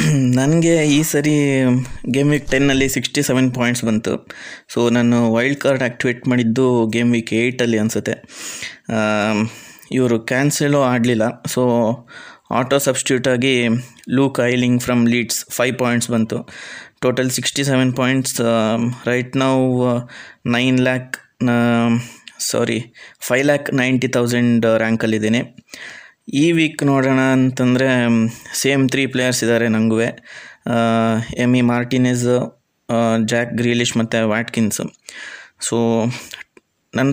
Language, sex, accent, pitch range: Kannada, male, native, 115-130 Hz